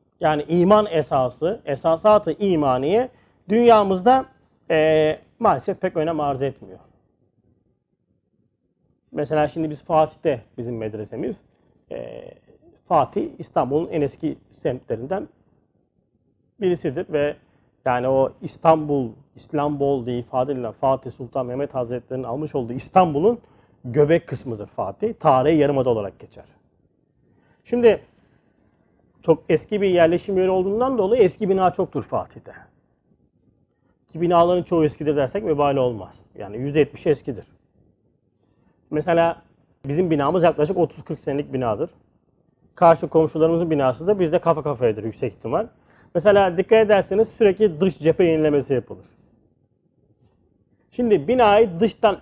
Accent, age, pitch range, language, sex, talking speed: native, 40-59, 135-185 Hz, Turkish, male, 110 wpm